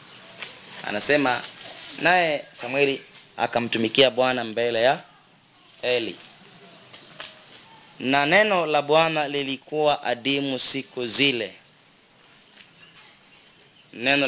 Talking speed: 70 wpm